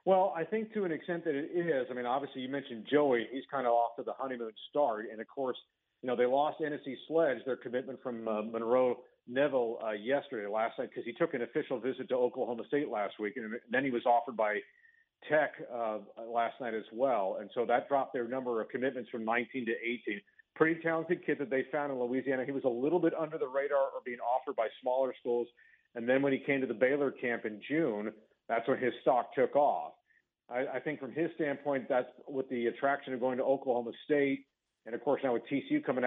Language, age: English, 40-59